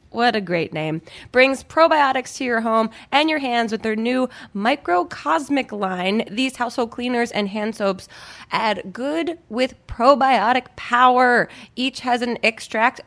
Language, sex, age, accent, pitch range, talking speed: English, female, 20-39, American, 235-295 Hz, 145 wpm